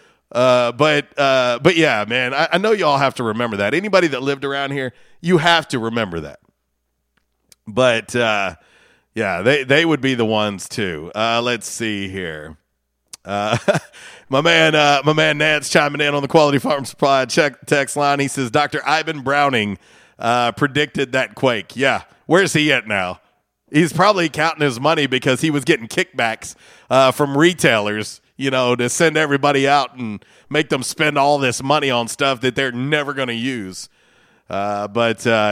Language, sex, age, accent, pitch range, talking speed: English, male, 40-59, American, 105-145 Hz, 180 wpm